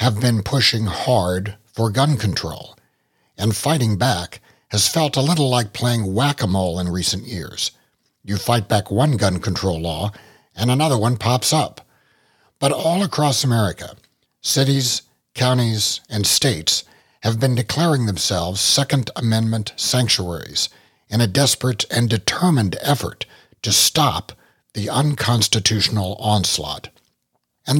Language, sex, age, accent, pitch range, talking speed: English, male, 60-79, American, 100-130 Hz, 125 wpm